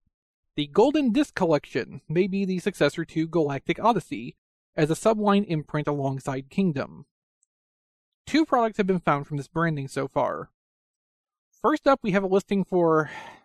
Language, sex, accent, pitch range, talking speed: English, male, American, 145-195 Hz, 150 wpm